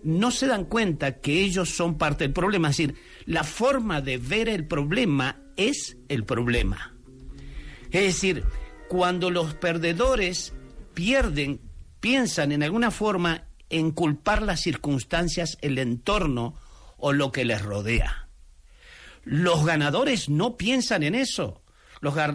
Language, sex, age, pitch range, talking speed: Spanish, male, 50-69, 150-215 Hz, 130 wpm